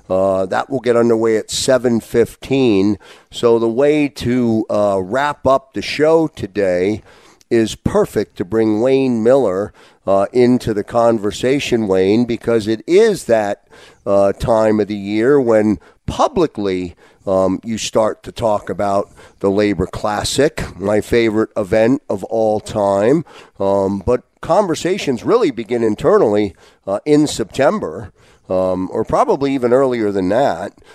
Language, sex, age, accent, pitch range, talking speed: English, male, 50-69, American, 105-145 Hz, 135 wpm